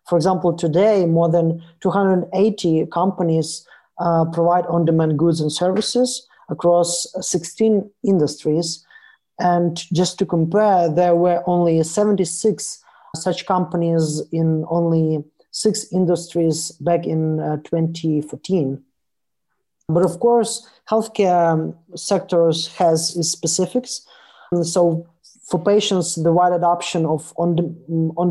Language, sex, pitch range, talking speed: English, male, 165-185 Hz, 105 wpm